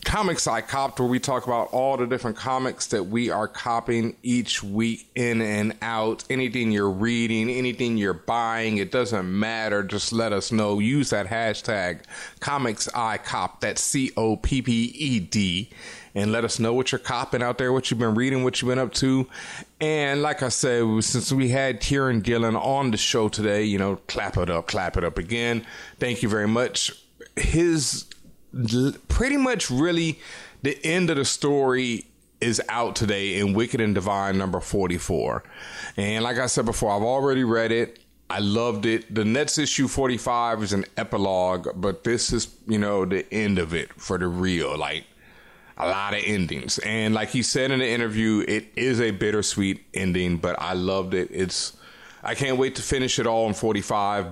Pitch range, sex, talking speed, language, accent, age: 100-125 Hz, male, 180 wpm, English, American, 30-49